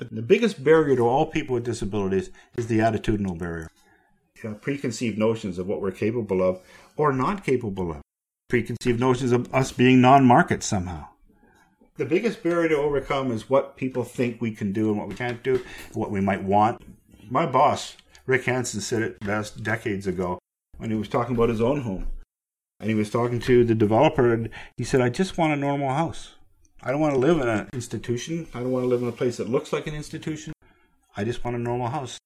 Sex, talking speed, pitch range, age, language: male, 205 wpm, 110-150 Hz, 50-69, English